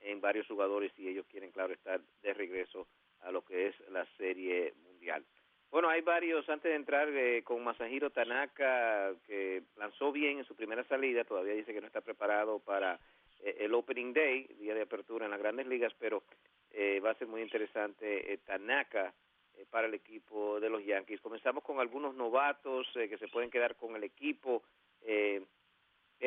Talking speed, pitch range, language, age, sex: 185 wpm, 115-150 Hz, English, 50-69, male